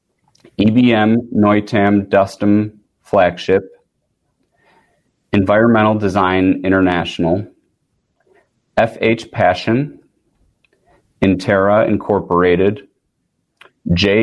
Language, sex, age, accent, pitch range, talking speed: English, male, 30-49, American, 95-105 Hz, 50 wpm